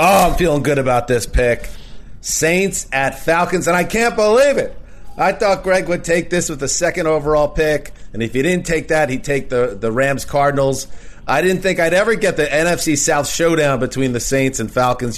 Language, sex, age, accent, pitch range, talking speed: English, male, 30-49, American, 120-165 Hz, 205 wpm